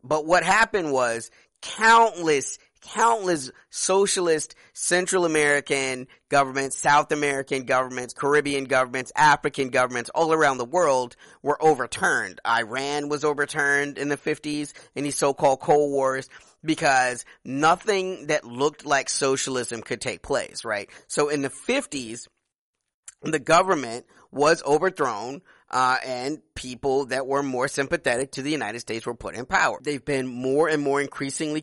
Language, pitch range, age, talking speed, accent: English, 125-155 Hz, 30-49, 140 wpm, American